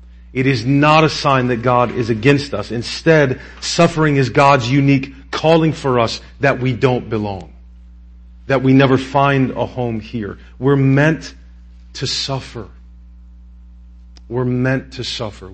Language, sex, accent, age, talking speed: English, male, American, 40-59, 145 wpm